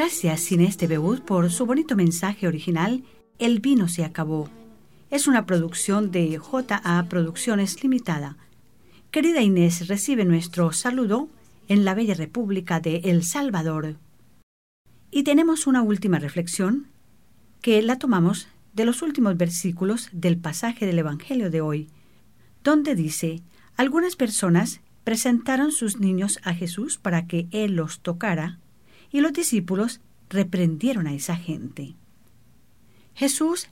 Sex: female